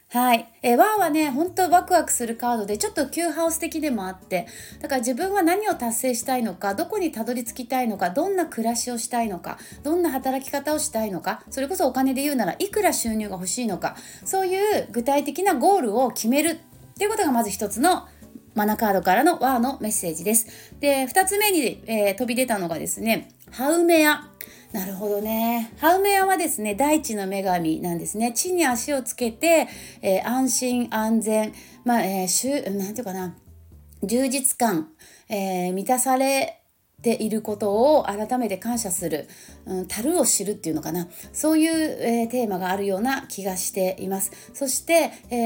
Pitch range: 200-290 Hz